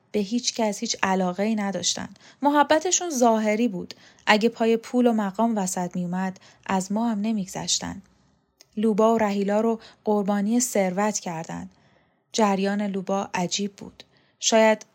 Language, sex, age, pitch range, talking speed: Persian, female, 10-29, 195-235 Hz, 130 wpm